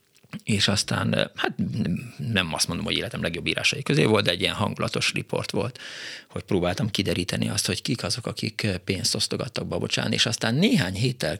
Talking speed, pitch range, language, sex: 175 wpm, 95-115 Hz, Hungarian, male